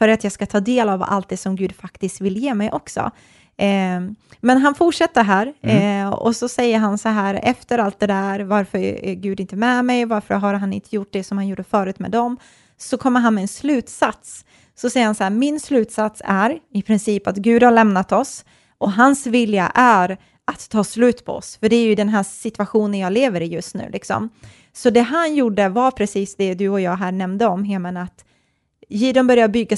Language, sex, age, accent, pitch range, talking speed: Swedish, female, 20-39, native, 195-235 Hz, 220 wpm